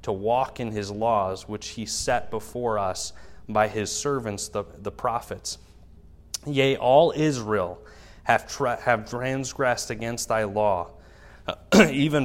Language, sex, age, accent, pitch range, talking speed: English, male, 30-49, American, 100-125 Hz, 130 wpm